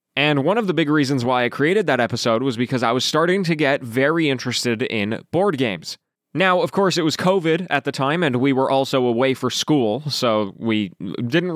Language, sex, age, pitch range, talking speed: English, male, 20-39, 120-175 Hz, 220 wpm